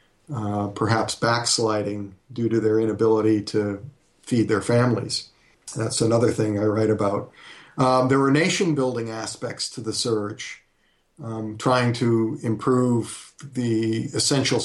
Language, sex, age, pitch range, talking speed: English, male, 40-59, 110-125 Hz, 125 wpm